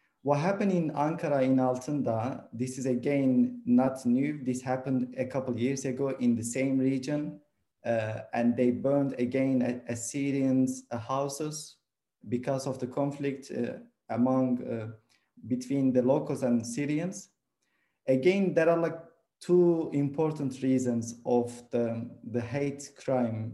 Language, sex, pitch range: Turkish, male, 120-140 Hz